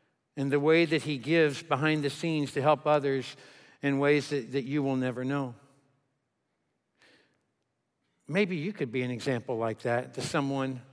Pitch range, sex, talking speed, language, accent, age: 135-170 Hz, male, 165 wpm, English, American, 60-79